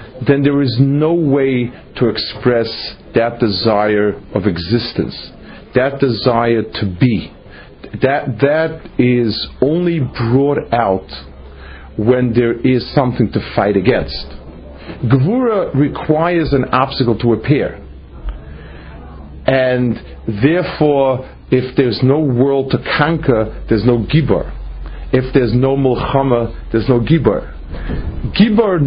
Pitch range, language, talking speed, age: 95-140 Hz, English, 120 wpm, 50-69